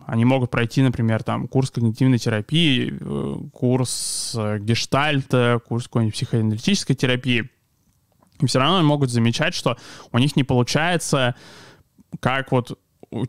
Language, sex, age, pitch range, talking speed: Russian, male, 20-39, 115-135 Hz, 120 wpm